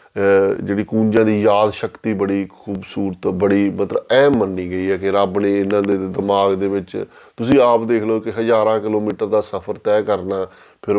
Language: Punjabi